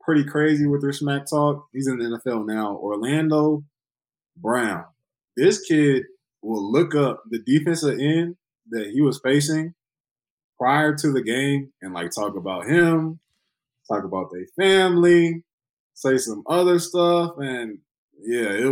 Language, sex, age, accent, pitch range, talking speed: English, male, 20-39, American, 120-160 Hz, 145 wpm